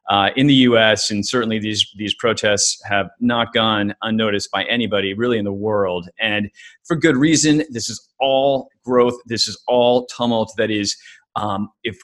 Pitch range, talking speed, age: 100-120 Hz, 175 wpm, 30-49